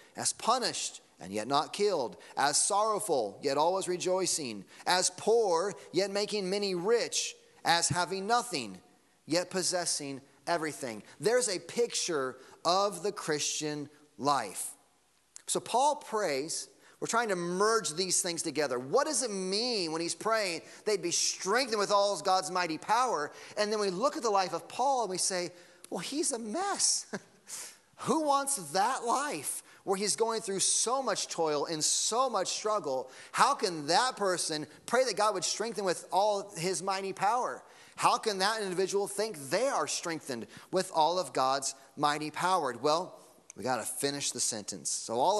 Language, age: English, 30-49